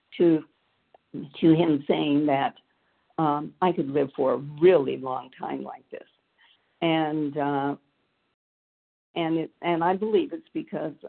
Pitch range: 150-185 Hz